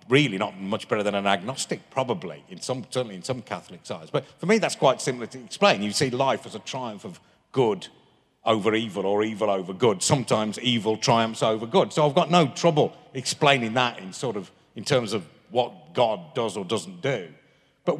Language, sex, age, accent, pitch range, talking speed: English, male, 40-59, British, 110-150 Hz, 205 wpm